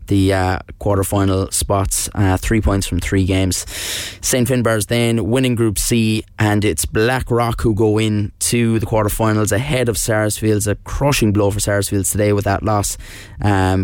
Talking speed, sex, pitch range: 170 wpm, male, 95-110 Hz